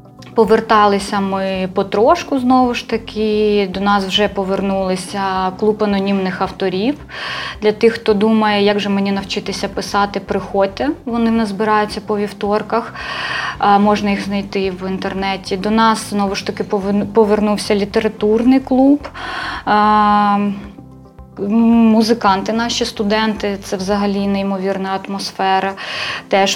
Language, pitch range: Ukrainian, 195-220 Hz